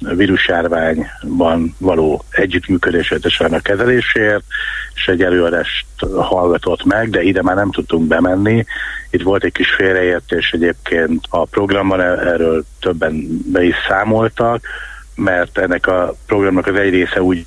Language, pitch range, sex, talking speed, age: Hungarian, 85-115 Hz, male, 135 wpm, 60-79